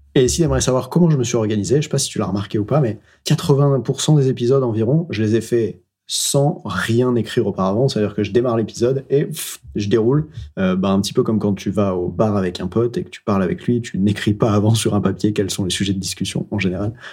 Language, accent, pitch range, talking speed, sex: French, French, 105-135 Hz, 270 wpm, male